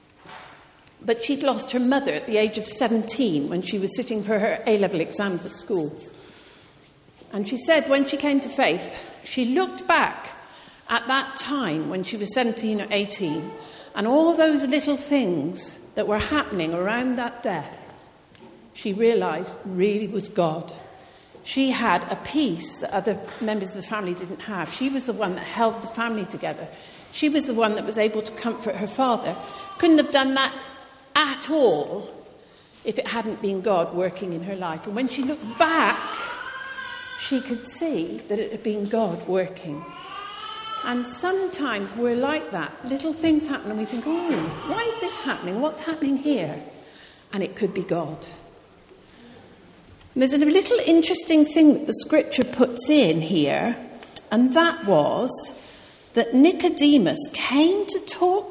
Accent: British